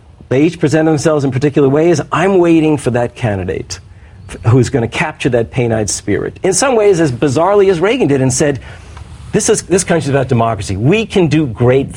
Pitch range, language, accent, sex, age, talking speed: 110-155 Hz, English, American, male, 50-69, 195 wpm